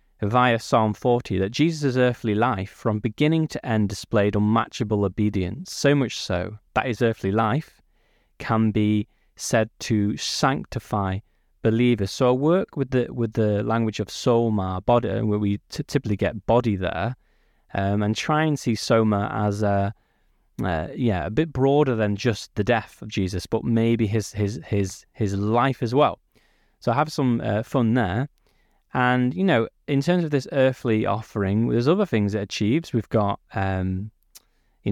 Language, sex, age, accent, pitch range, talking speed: English, male, 20-39, British, 105-125 Hz, 170 wpm